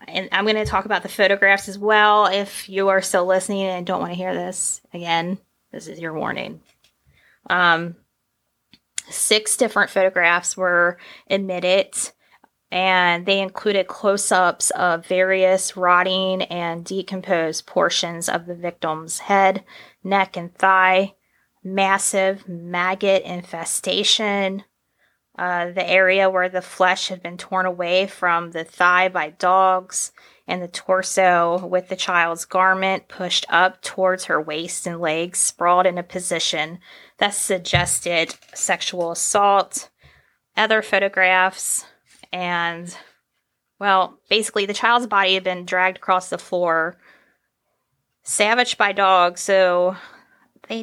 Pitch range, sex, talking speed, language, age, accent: 175-195 Hz, female, 125 wpm, English, 20-39, American